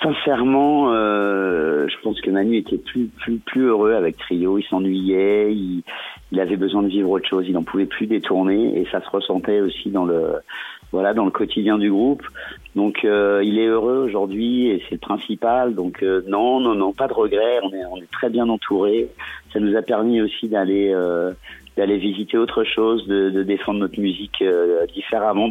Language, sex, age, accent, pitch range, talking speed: French, male, 50-69, French, 95-115 Hz, 200 wpm